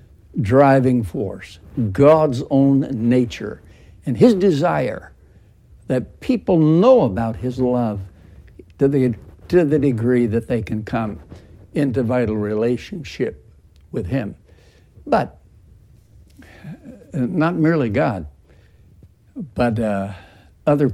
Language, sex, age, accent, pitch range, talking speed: English, male, 60-79, American, 90-130 Hz, 100 wpm